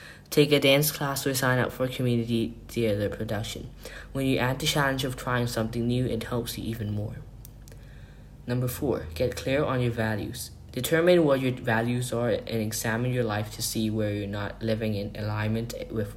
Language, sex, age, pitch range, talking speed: English, male, 10-29, 110-130 Hz, 185 wpm